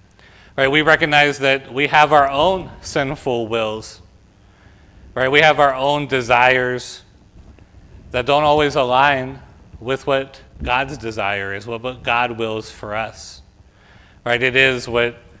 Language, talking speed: English, 130 wpm